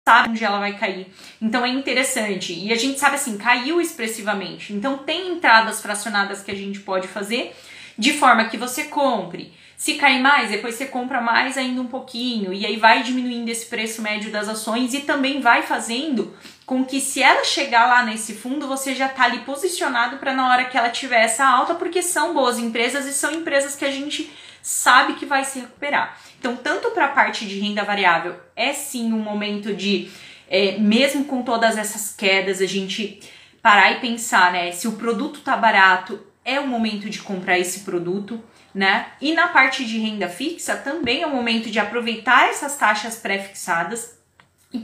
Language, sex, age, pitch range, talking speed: Portuguese, female, 20-39, 210-275 Hz, 190 wpm